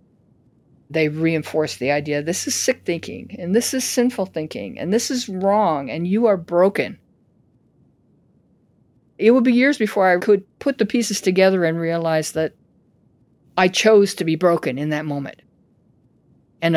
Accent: American